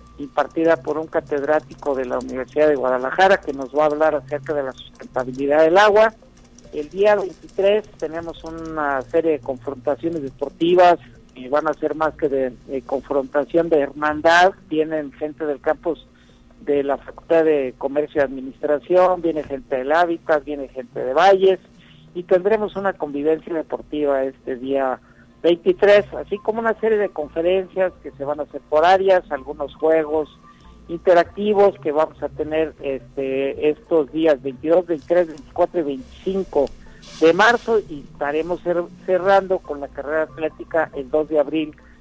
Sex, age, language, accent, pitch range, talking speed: male, 50-69, Spanish, Mexican, 140-175 Hz, 155 wpm